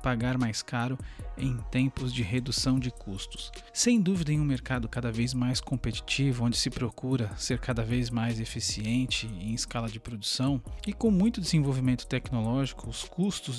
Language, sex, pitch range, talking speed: Portuguese, male, 115-150 Hz, 165 wpm